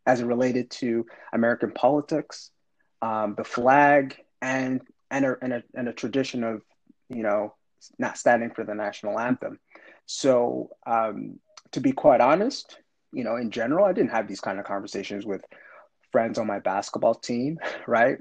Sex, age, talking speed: male, 30-49, 165 wpm